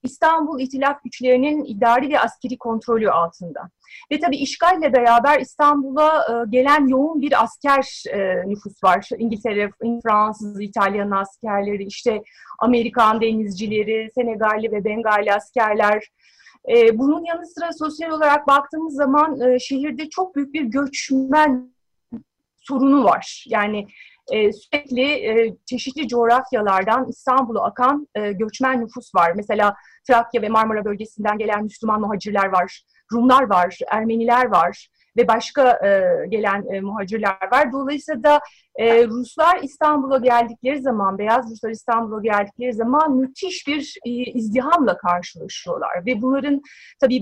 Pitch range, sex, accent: 220-280 Hz, female, native